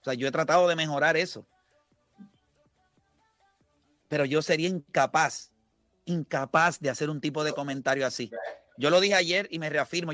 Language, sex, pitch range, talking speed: Spanish, male, 150-195 Hz, 160 wpm